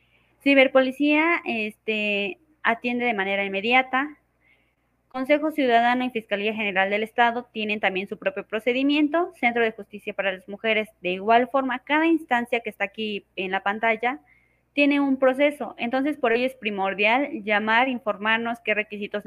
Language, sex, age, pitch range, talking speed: Spanish, female, 20-39, 205-255 Hz, 145 wpm